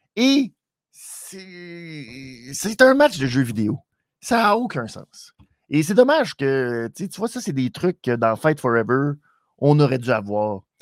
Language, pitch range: French, 130-205 Hz